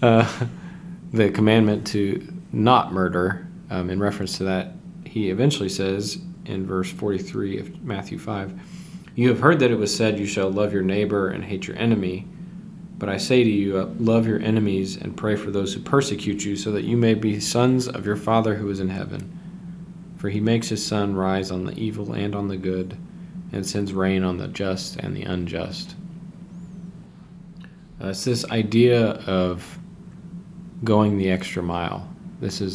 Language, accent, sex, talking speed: English, American, male, 180 wpm